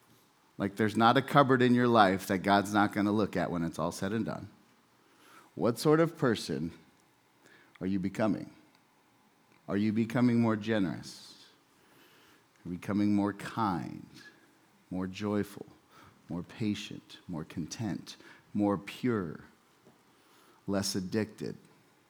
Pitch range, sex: 95-120 Hz, male